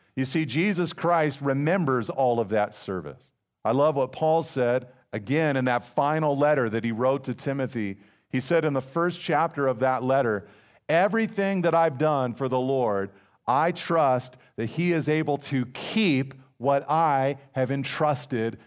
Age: 50-69